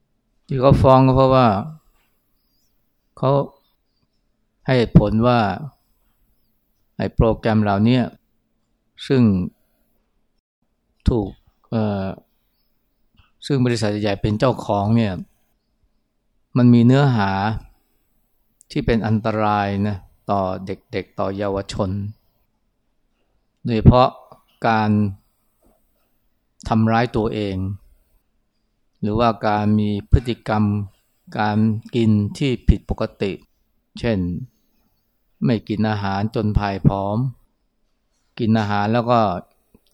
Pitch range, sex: 100-120 Hz, male